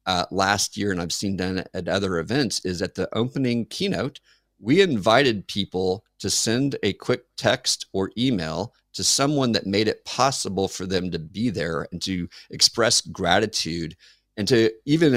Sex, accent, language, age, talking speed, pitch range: male, American, English, 50-69, 170 wpm, 95-115 Hz